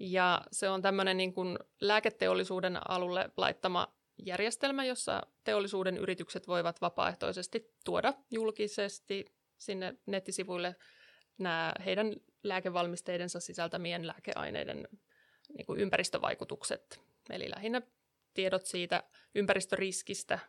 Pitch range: 185-220 Hz